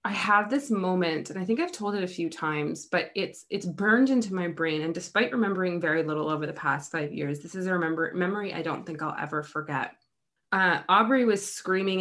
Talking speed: 225 wpm